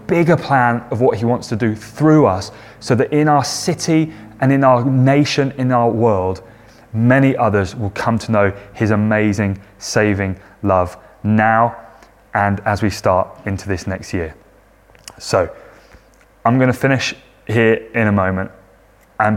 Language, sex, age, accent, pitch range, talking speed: English, male, 20-39, British, 100-125 Hz, 160 wpm